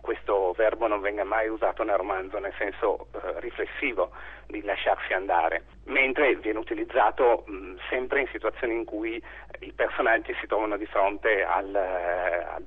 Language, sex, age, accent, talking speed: Italian, male, 40-59, native, 140 wpm